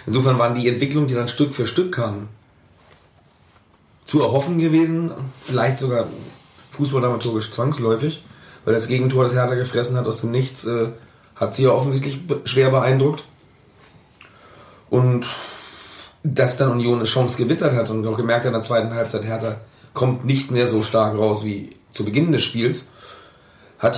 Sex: male